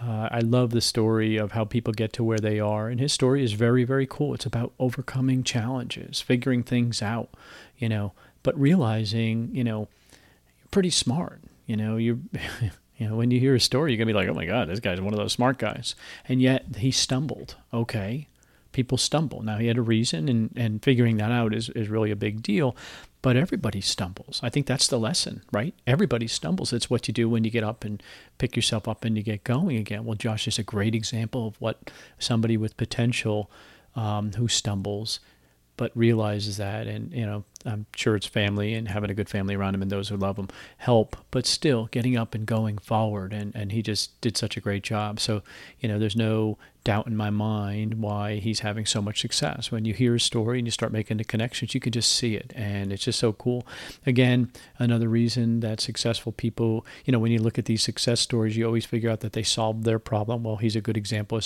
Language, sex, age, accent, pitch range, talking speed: English, male, 40-59, American, 105-120 Hz, 225 wpm